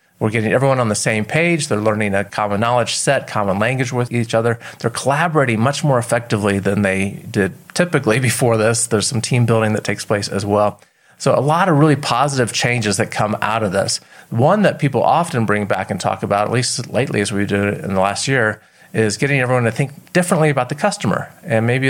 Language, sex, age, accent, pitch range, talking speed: English, male, 40-59, American, 105-145 Hz, 220 wpm